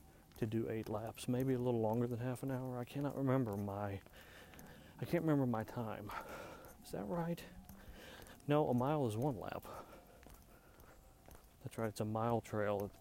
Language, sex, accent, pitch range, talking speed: English, male, American, 85-115 Hz, 175 wpm